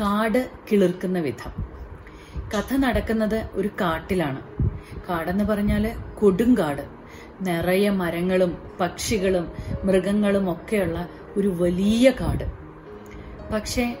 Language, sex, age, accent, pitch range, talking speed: Malayalam, female, 30-49, native, 180-240 Hz, 80 wpm